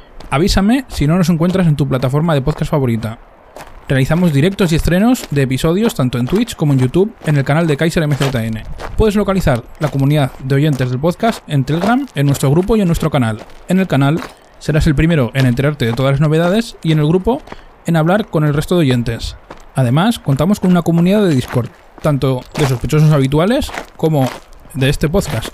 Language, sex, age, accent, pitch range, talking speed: Spanish, male, 20-39, Spanish, 135-185 Hz, 195 wpm